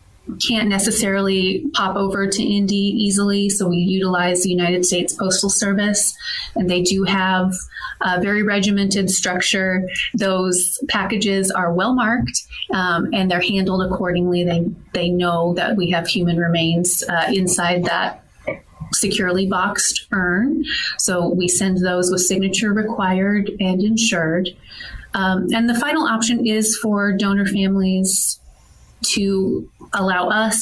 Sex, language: female, English